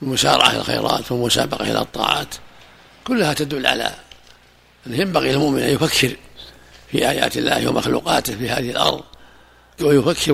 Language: Arabic